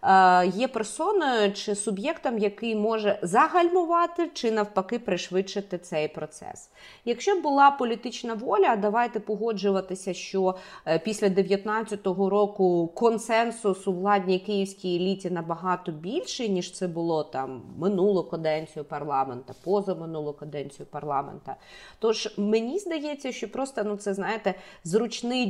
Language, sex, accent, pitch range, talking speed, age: Ukrainian, female, native, 175-225 Hz, 115 wpm, 30-49